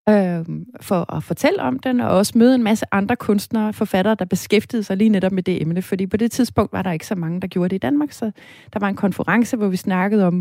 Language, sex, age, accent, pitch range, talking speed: Danish, female, 30-49, native, 185-230 Hz, 260 wpm